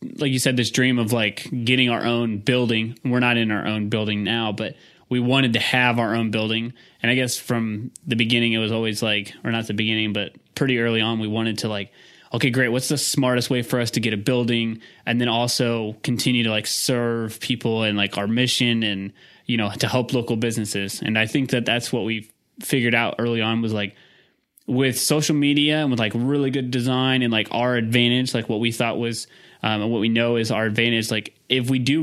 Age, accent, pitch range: 20-39, American, 110-130 Hz